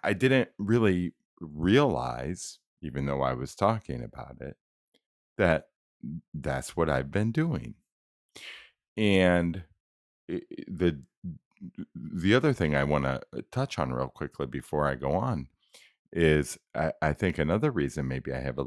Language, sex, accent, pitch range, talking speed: English, male, American, 70-90 Hz, 140 wpm